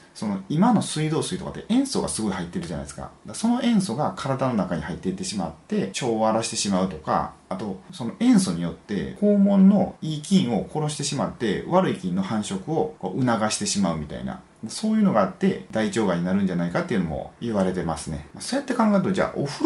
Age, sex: 30-49, male